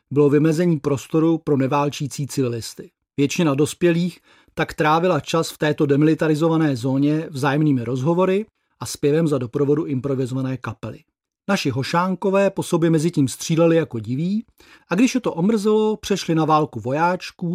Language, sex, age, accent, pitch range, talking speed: Czech, male, 40-59, native, 140-180 Hz, 140 wpm